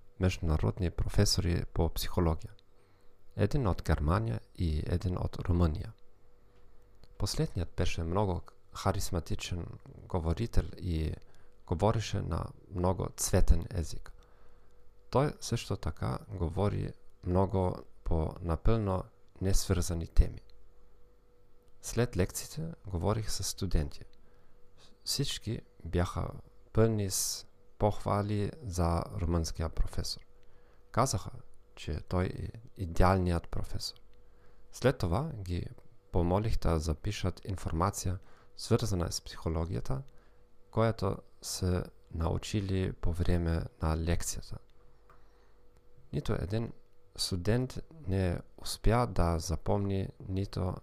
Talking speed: 90 wpm